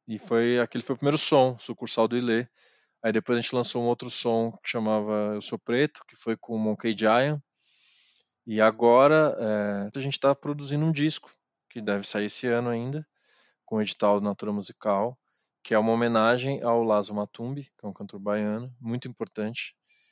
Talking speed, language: 190 wpm, Portuguese